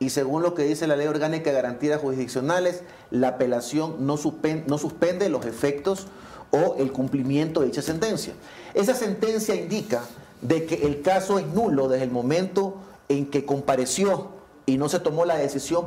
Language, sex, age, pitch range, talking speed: English, male, 40-59, 135-180 Hz, 165 wpm